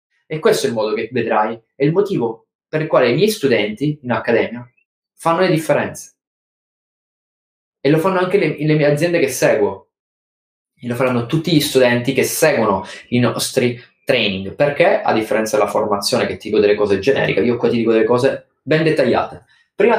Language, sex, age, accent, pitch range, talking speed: Italian, male, 20-39, native, 115-155 Hz, 185 wpm